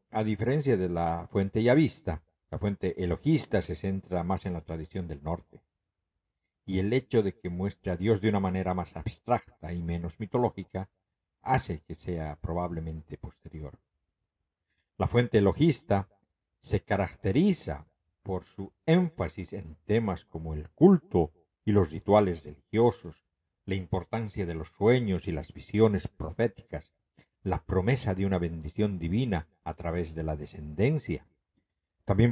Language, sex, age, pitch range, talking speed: Spanish, male, 50-69, 85-110 Hz, 140 wpm